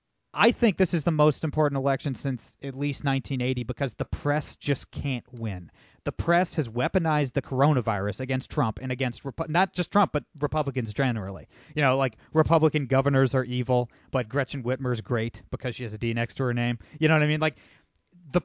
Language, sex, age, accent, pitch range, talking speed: English, male, 30-49, American, 125-165 Hz, 195 wpm